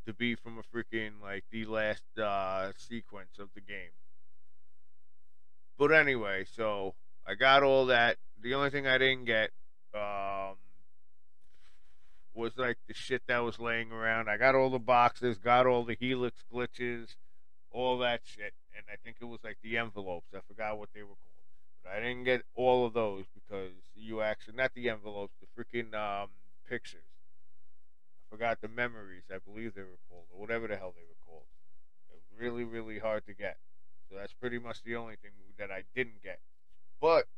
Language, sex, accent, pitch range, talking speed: English, male, American, 95-120 Hz, 180 wpm